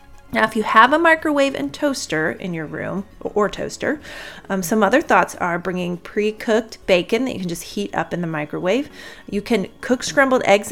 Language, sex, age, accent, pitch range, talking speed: English, female, 30-49, American, 175-235 Hz, 195 wpm